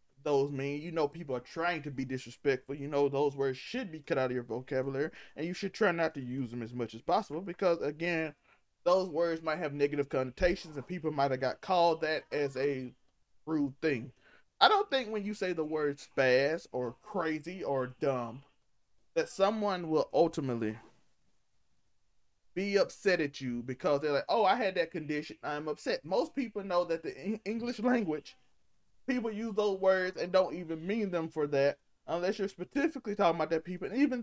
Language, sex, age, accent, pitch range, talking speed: English, male, 20-39, American, 140-195 Hz, 195 wpm